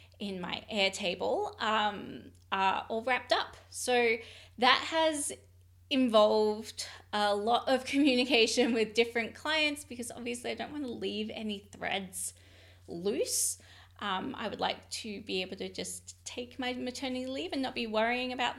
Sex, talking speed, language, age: female, 155 wpm, English, 20-39